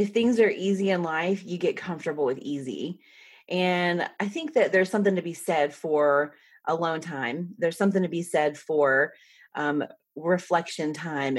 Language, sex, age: English, female, 30-49